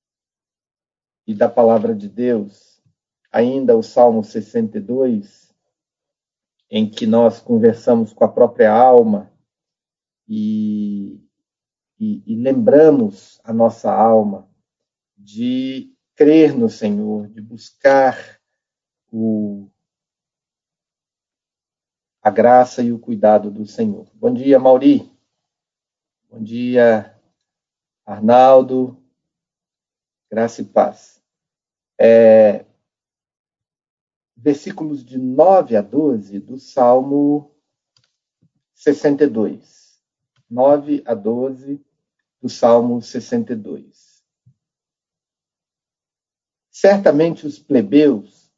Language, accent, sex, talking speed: Portuguese, Brazilian, male, 80 wpm